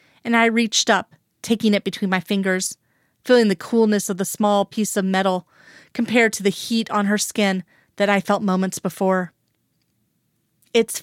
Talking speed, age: 170 wpm, 30-49